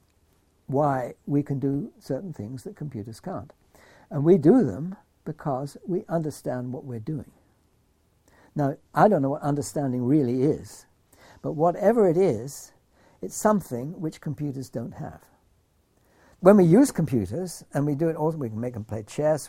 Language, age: English, 60-79